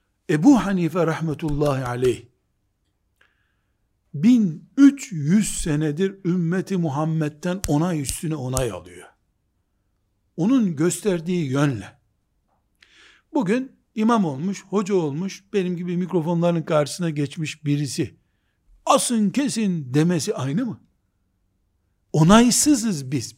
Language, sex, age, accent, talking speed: Turkish, male, 60-79, native, 85 wpm